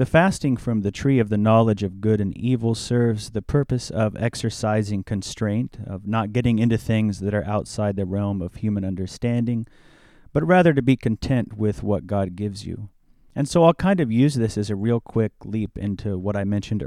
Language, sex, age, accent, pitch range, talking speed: English, male, 30-49, American, 100-120 Hz, 205 wpm